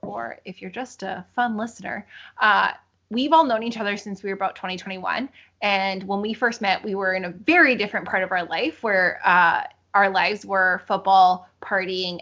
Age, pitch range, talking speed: 20-39, 180-220 Hz, 195 wpm